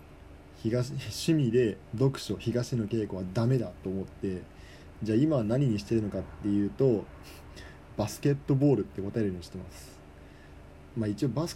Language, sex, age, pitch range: Japanese, male, 20-39, 90-120 Hz